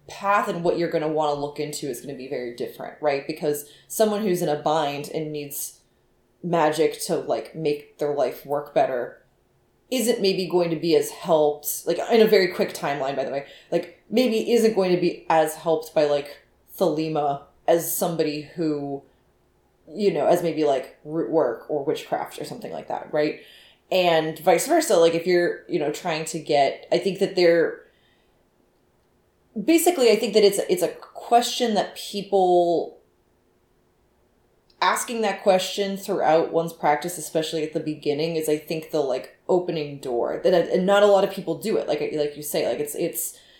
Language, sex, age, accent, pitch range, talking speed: English, female, 20-39, American, 150-195 Hz, 185 wpm